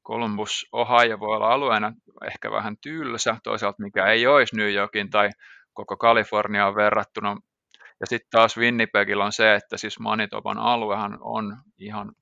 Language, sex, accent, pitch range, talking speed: Finnish, male, native, 105-120 Hz, 145 wpm